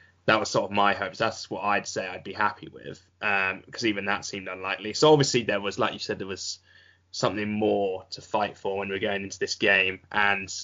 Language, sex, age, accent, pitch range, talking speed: English, male, 10-29, British, 95-105 Hz, 230 wpm